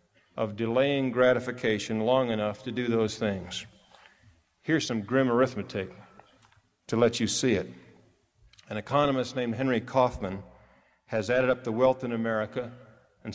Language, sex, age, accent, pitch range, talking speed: English, male, 50-69, American, 110-130 Hz, 140 wpm